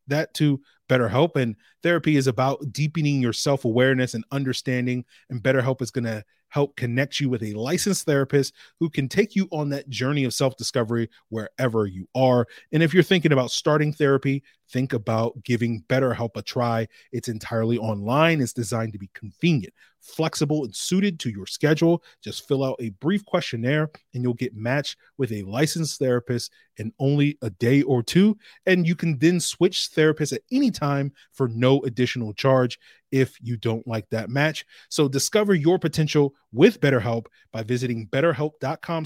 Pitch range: 120-155 Hz